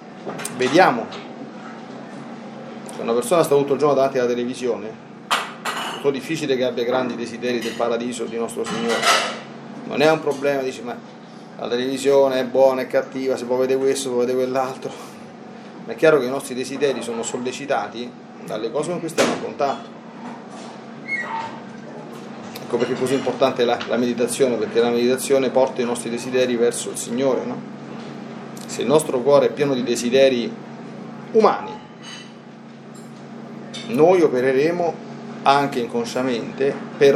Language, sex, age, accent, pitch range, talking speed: Italian, male, 30-49, native, 125-170 Hz, 145 wpm